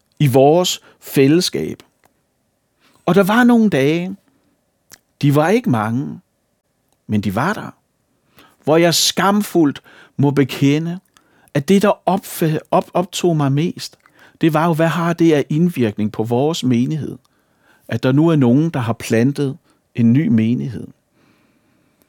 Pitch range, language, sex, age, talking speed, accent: 140-180 Hz, Danish, male, 60-79, 135 wpm, native